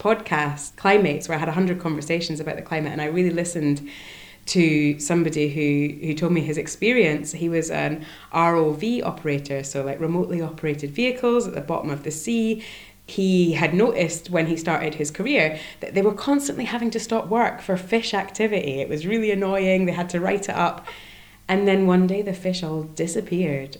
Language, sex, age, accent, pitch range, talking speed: English, female, 20-39, British, 145-180 Hz, 190 wpm